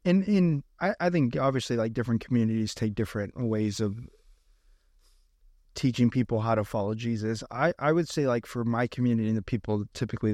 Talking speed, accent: 185 wpm, American